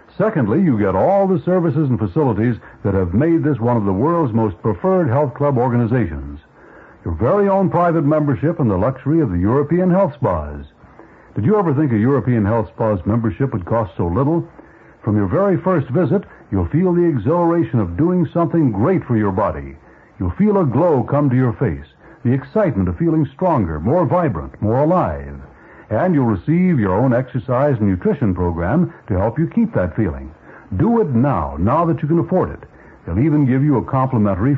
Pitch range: 105-165 Hz